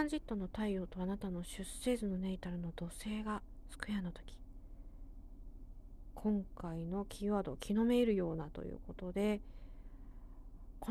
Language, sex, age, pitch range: Japanese, female, 40-59, 170-220 Hz